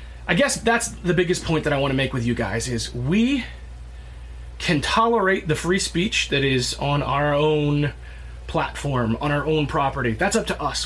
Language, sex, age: English, male, 30-49